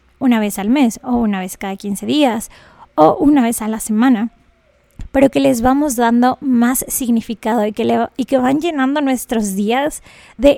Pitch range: 225-270 Hz